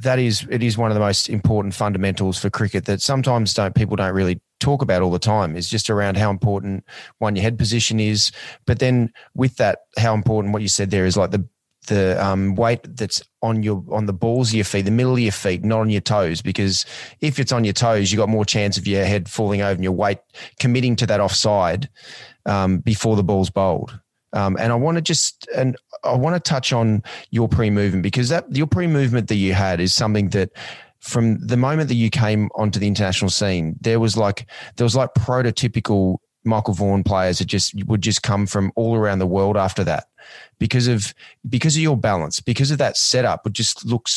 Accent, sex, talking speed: Australian, male, 225 wpm